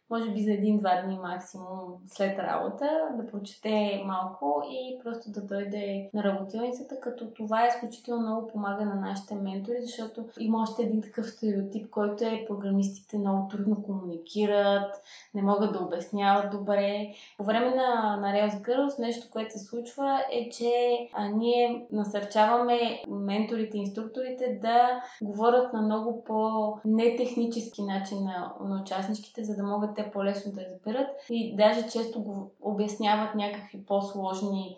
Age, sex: 20-39, female